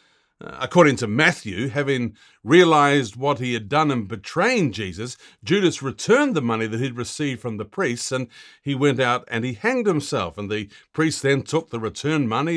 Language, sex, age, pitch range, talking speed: English, male, 50-69, 120-160 Hz, 180 wpm